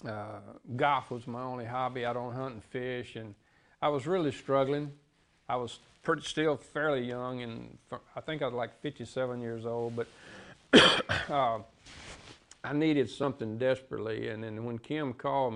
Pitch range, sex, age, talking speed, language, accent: 115-135 Hz, male, 50-69, 160 wpm, English, American